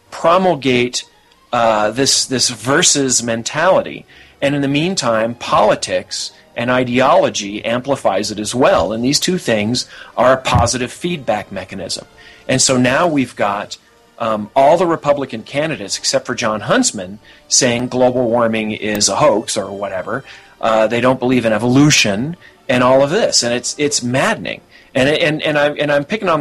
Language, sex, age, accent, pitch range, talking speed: English, male, 40-59, American, 105-135 Hz, 160 wpm